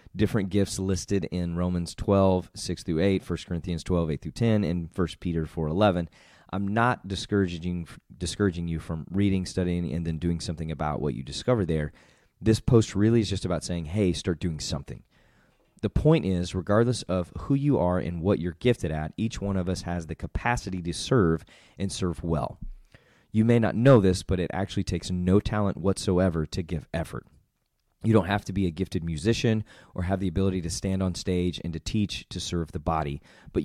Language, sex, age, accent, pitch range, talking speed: English, male, 30-49, American, 85-105 Hz, 190 wpm